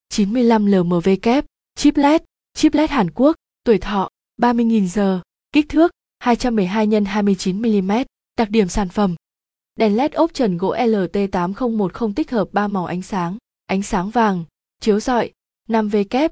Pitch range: 195-240 Hz